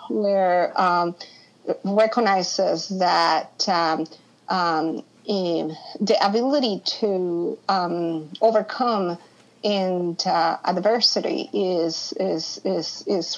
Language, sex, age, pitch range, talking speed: English, female, 50-69, 175-215 Hz, 85 wpm